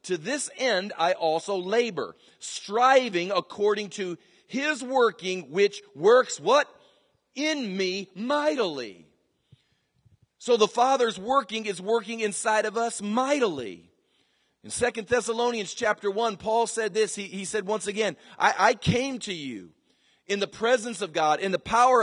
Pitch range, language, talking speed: 175-230 Hz, English, 145 wpm